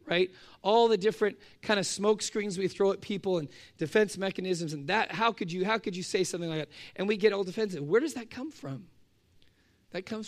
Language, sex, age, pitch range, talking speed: English, male, 40-59, 140-190 Hz, 230 wpm